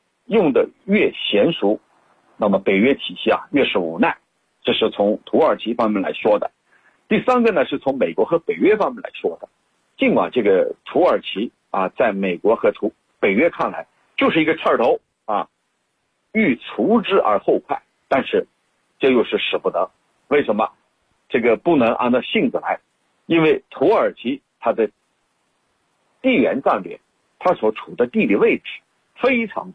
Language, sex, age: Chinese, male, 50-69